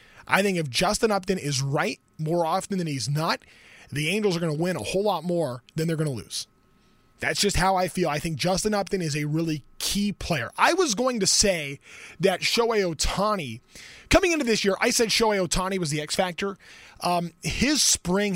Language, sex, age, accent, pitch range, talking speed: English, male, 20-39, American, 155-200 Hz, 210 wpm